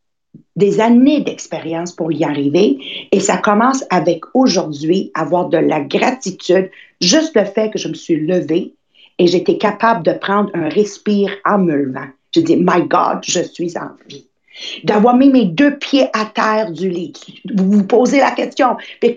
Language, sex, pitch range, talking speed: English, female, 180-250 Hz, 175 wpm